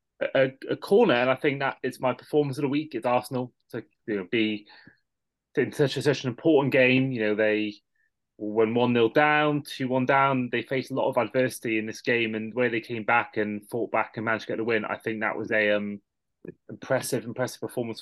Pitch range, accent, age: 115-150 Hz, British, 20-39